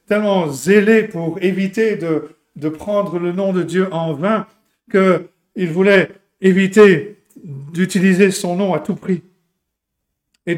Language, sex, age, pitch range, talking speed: French, male, 60-79, 160-195 Hz, 130 wpm